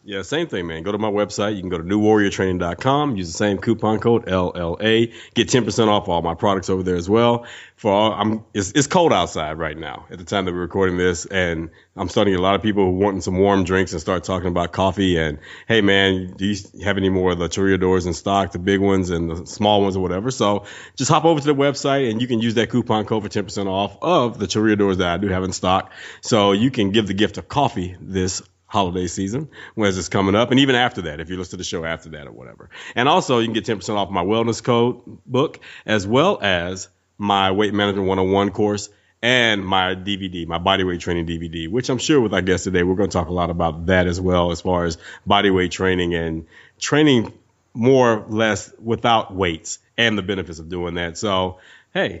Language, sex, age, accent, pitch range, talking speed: English, male, 30-49, American, 90-110 Hz, 240 wpm